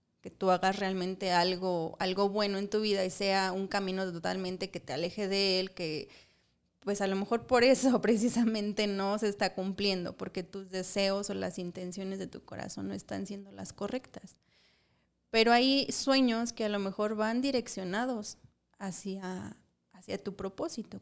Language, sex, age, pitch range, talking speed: Spanish, female, 20-39, 185-215 Hz, 170 wpm